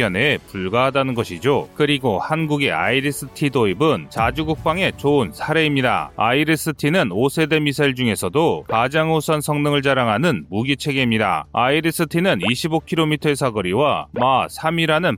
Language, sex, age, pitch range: Korean, male, 30-49, 130-160 Hz